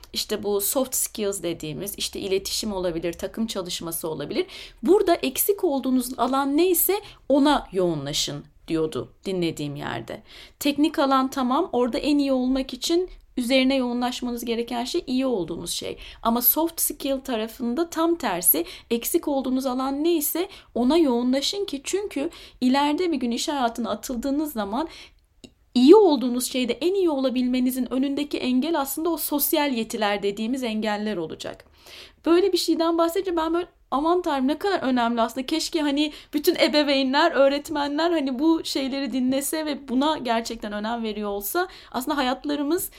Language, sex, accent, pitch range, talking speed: Turkish, female, native, 235-320 Hz, 140 wpm